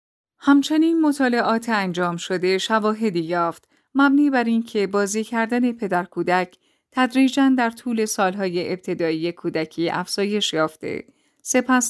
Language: Persian